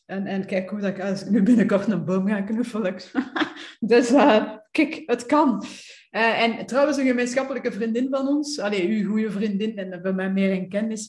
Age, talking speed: 30-49, 195 wpm